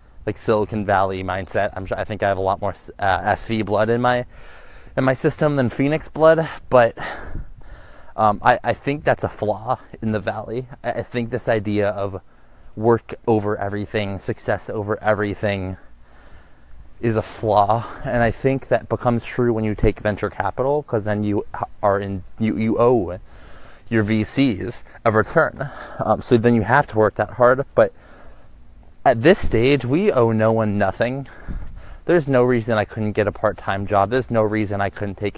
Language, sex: English, male